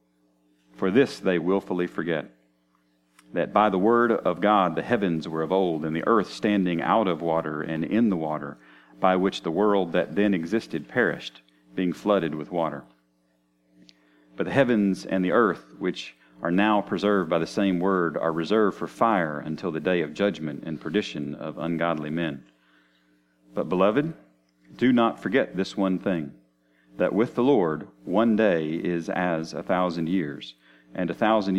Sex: male